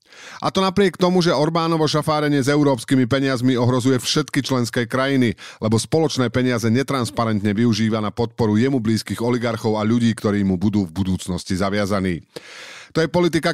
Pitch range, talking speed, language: 105-135 Hz, 155 wpm, Slovak